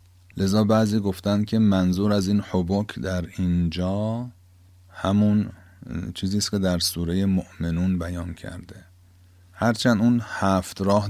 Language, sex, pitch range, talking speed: Persian, male, 90-100 Hz, 120 wpm